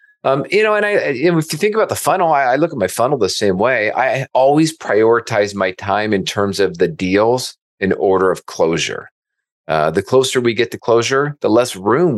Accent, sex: American, male